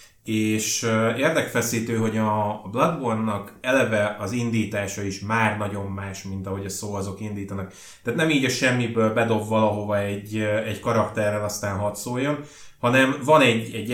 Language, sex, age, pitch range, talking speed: Hungarian, male, 20-39, 105-115 Hz, 145 wpm